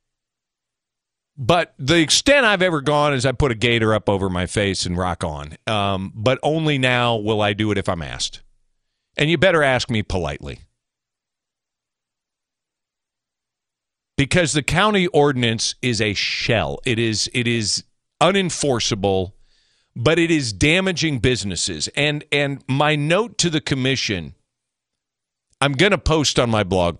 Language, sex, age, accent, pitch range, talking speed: English, male, 50-69, American, 110-180 Hz, 145 wpm